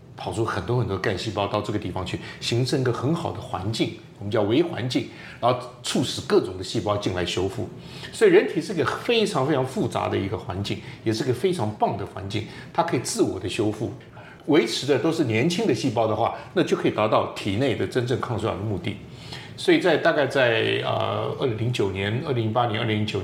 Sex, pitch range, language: male, 105-125 Hz, Chinese